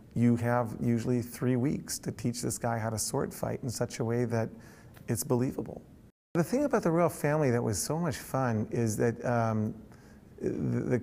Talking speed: 195 wpm